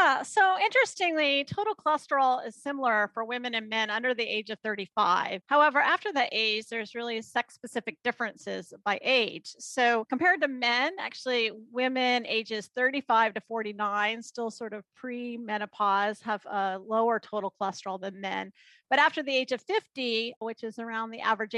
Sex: female